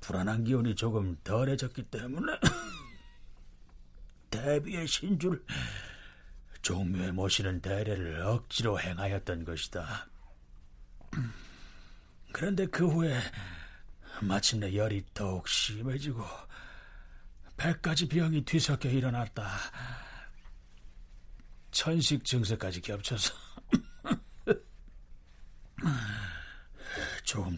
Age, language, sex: 40-59, Korean, male